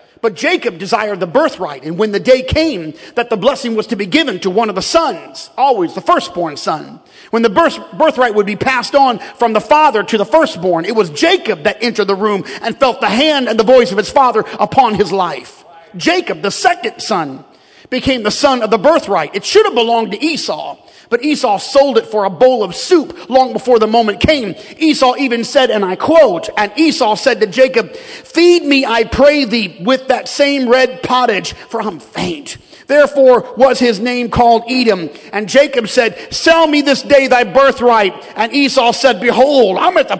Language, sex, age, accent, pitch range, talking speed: English, male, 40-59, American, 215-280 Hz, 200 wpm